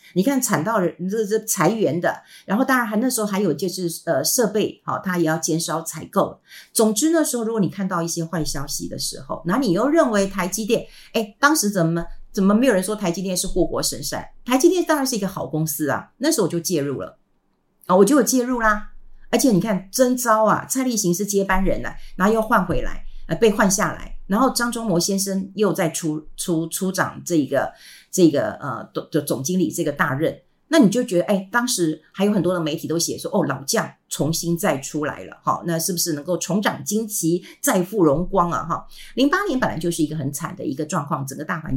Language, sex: Chinese, female